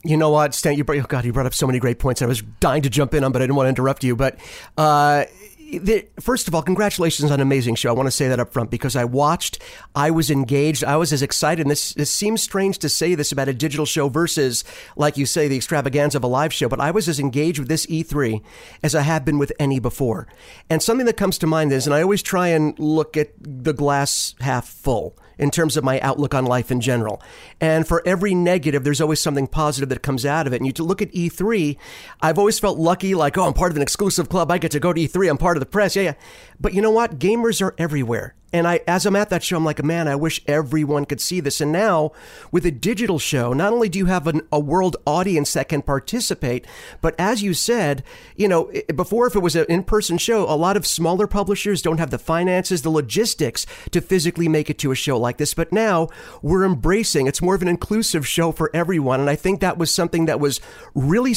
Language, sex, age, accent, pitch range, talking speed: English, male, 40-59, American, 145-185 Hz, 250 wpm